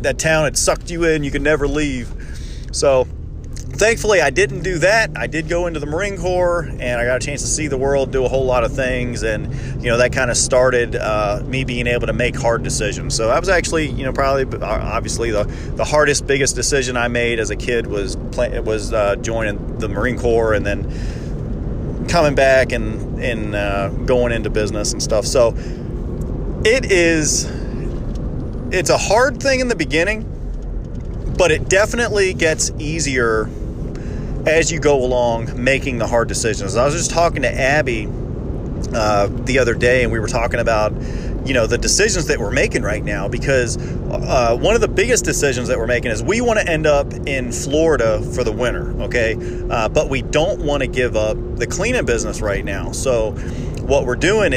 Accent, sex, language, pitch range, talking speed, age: American, male, English, 115-140 Hz, 195 wpm, 30-49